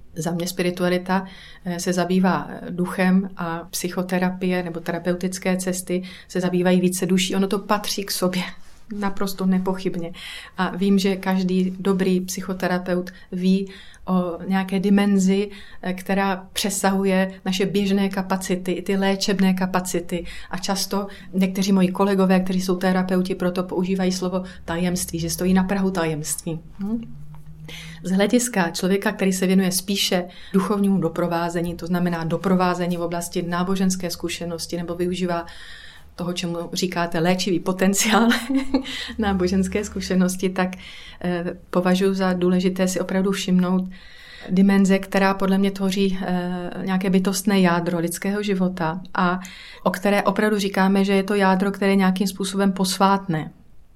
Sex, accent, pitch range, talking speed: female, native, 180-195 Hz, 125 wpm